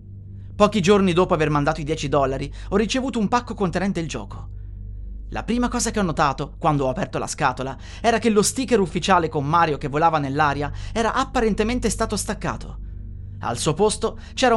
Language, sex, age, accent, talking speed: Italian, male, 30-49, native, 180 wpm